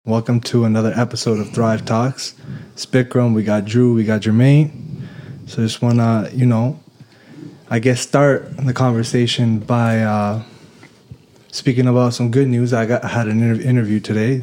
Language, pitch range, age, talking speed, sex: English, 110-125 Hz, 20-39, 160 wpm, male